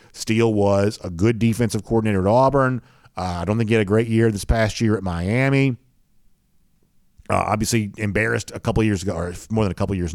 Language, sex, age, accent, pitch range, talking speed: English, male, 40-59, American, 95-130 Hz, 205 wpm